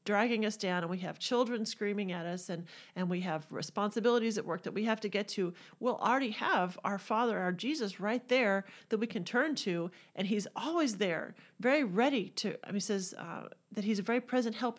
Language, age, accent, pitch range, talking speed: English, 40-59, American, 180-245 Hz, 220 wpm